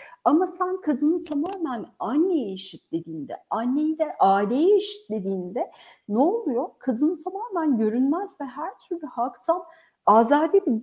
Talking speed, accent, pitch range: 125 wpm, native, 215-295 Hz